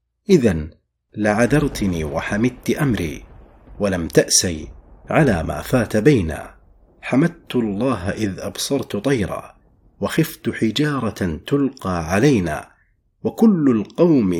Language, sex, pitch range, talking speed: Arabic, male, 90-125 Hz, 90 wpm